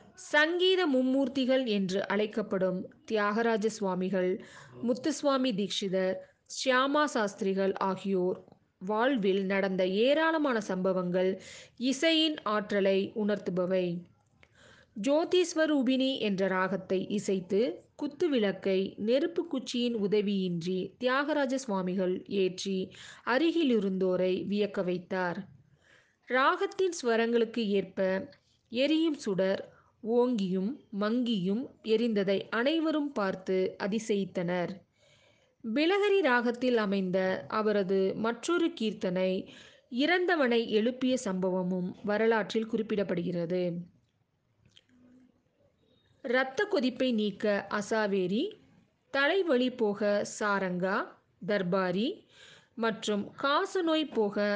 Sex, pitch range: female, 190-255 Hz